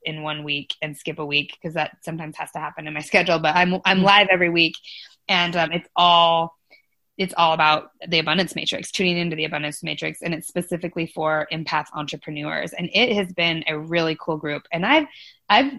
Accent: American